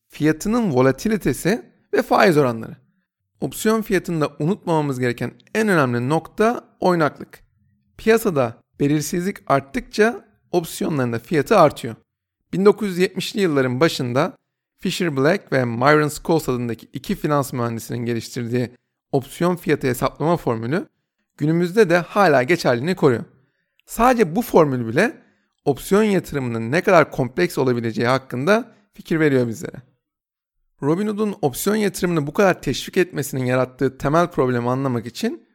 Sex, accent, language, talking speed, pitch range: male, native, Turkish, 115 wpm, 130-185 Hz